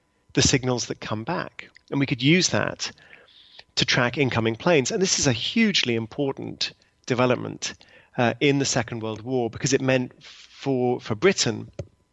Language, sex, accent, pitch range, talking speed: English, male, British, 115-140 Hz, 165 wpm